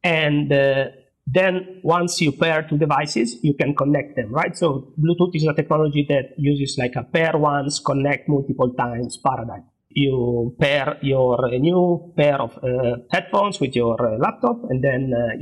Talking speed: 165 wpm